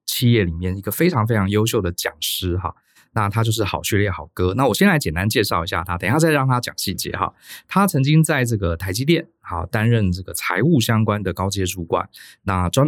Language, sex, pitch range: Chinese, male, 90-125 Hz